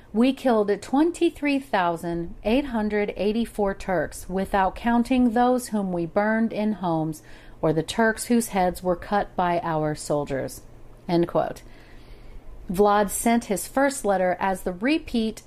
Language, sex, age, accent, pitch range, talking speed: English, female, 40-59, American, 175-240 Hz, 130 wpm